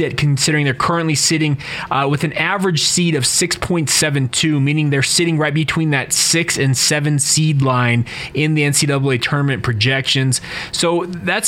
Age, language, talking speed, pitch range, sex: 20-39, English, 150 wpm, 135-175 Hz, male